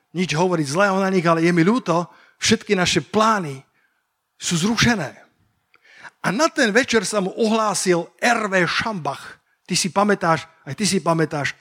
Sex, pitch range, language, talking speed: male, 160-210 Hz, Slovak, 155 wpm